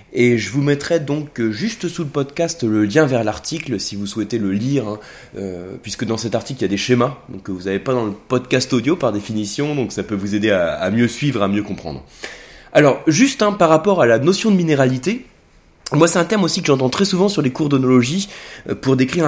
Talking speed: 235 wpm